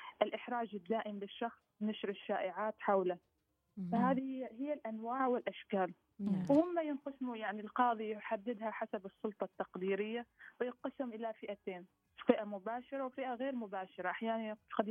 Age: 20-39